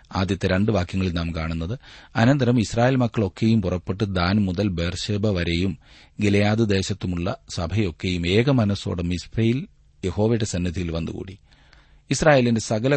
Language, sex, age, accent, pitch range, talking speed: Malayalam, male, 40-59, native, 90-115 Hz, 110 wpm